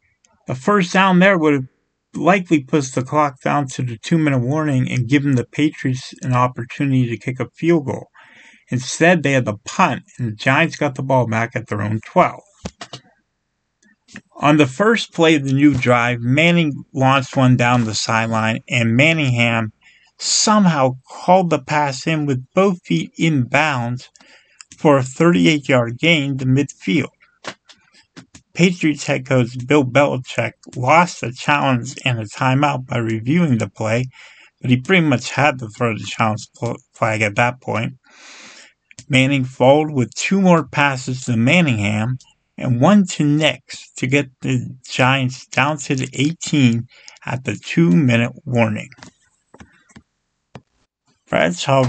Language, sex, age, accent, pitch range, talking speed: English, male, 50-69, American, 120-150 Hz, 145 wpm